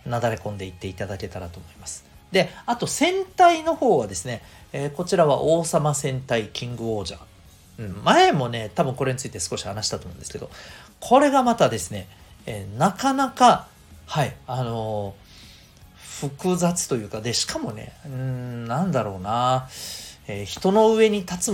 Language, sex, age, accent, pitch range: Japanese, male, 40-59, native, 95-150 Hz